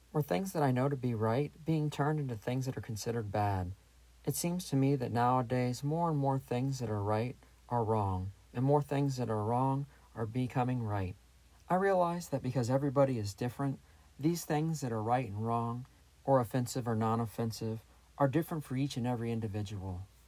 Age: 40-59